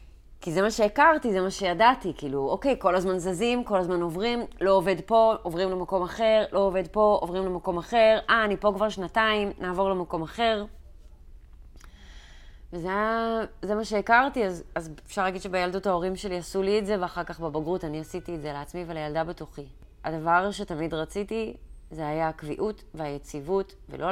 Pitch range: 145-195 Hz